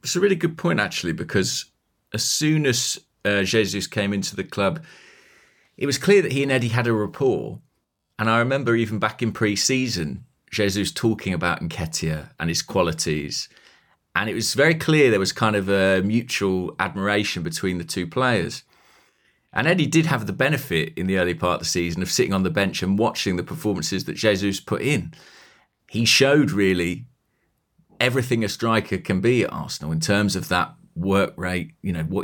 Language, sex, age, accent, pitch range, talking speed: English, male, 30-49, British, 90-115 Hz, 190 wpm